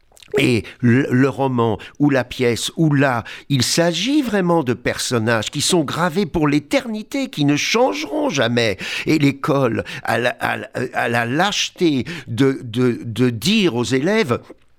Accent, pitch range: French, 100-140 Hz